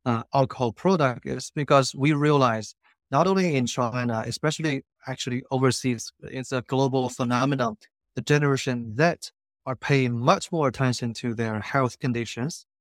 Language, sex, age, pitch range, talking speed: English, male, 30-49, 125-150 Hz, 140 wpm